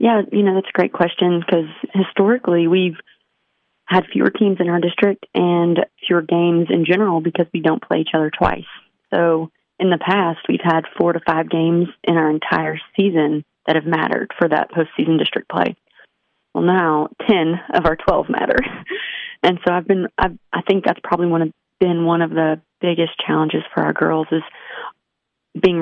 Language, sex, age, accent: English, female, 30-49, American